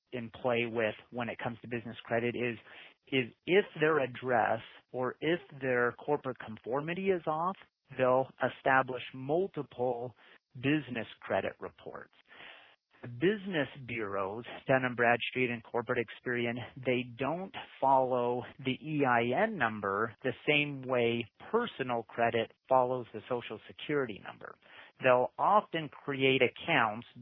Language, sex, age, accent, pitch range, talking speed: English, male, 40-59, American, 115-140 Hz, 125 wpm